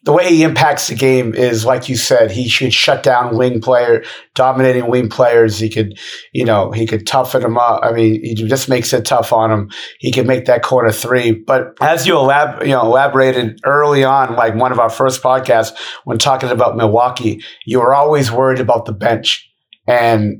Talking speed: 205 wpm